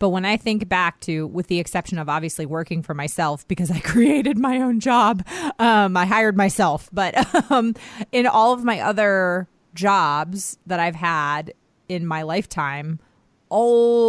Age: 30-49